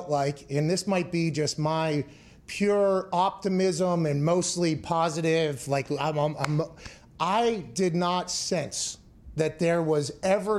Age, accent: 30-49, American